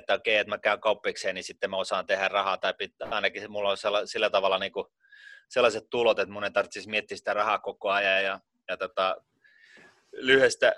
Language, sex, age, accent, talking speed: Finnish, male, 30-49, native, 195 wpm